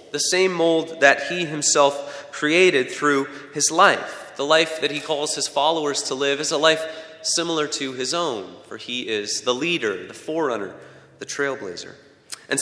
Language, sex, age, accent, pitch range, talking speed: English, male, 30-49, American, 140-175 Hz, 170 wpm